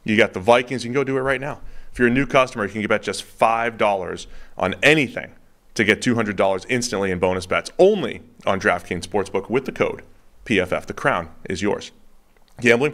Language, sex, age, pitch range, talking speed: English, male, 30-49, 100-130 Hz, 200 wpm